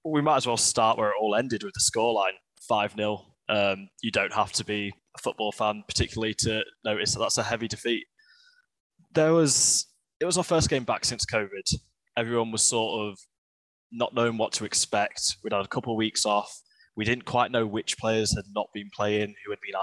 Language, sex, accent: English, male, British